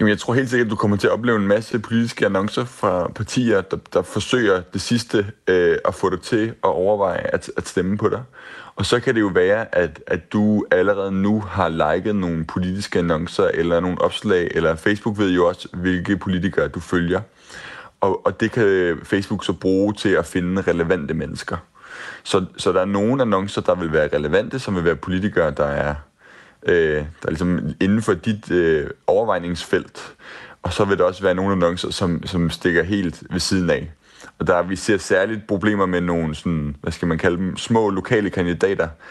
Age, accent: 30-49, native